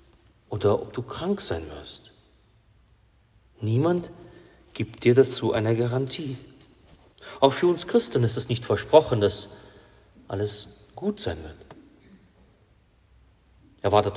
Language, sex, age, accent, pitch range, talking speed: German, male, 40-59, German, 110-150 Hz, 110 wpm